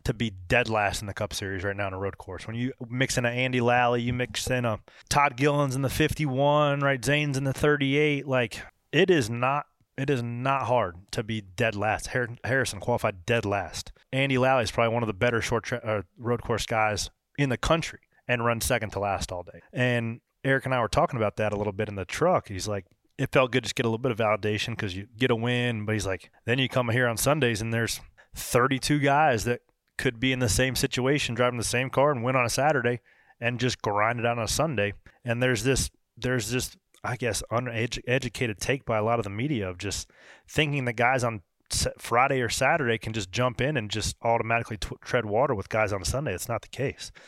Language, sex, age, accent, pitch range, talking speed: English, male, 20-39, American, 110-135 Hz, 235 wpm